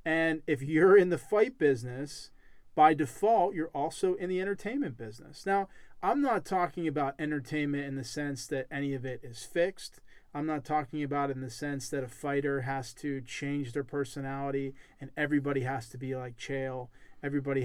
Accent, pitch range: American, 135-160 Hz